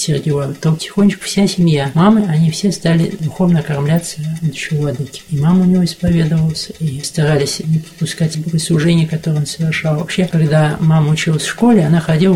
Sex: male